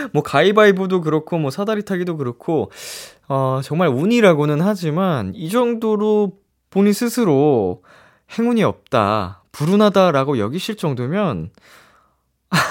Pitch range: 115-180 Hz